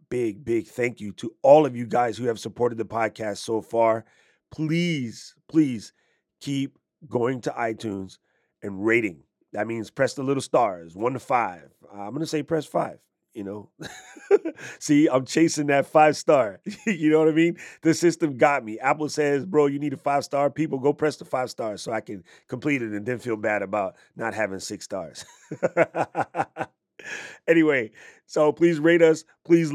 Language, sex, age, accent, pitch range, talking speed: English, male, 30-49, American, 120-155 Hz, 180 wpm